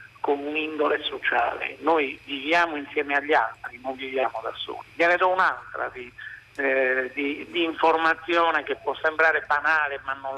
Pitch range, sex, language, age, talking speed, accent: 150-180 Hz, male, Italian, 50-69, 160 wpm, native